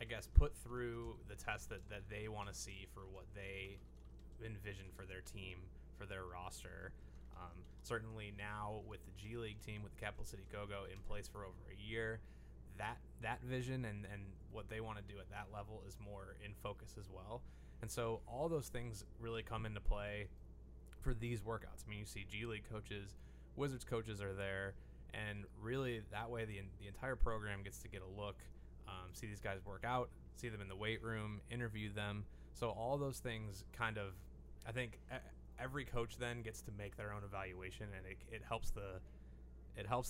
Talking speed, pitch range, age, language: 200 wpm, 95-110 Hz, 20-39, English